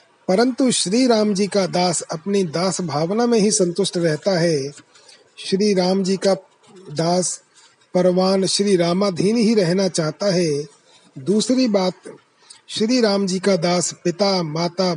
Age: 40-59